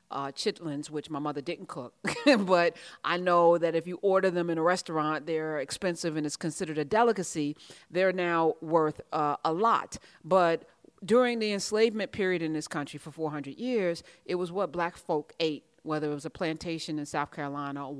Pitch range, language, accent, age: 155-185 Hz, English, American, 40-59